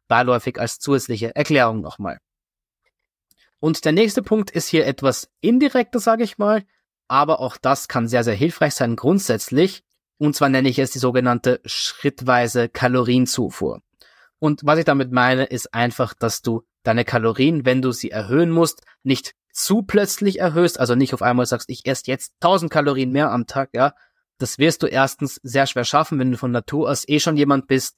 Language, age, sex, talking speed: German, 20-39, male, 180 wpm